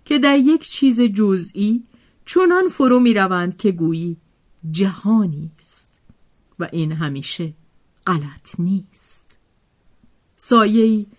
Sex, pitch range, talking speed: female, 165-230 Hz, 100 wpm